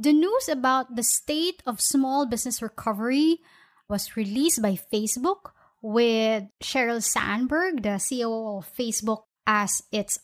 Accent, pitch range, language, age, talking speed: Filipino, 210-265 Hz, English, 20-39, 130 wpm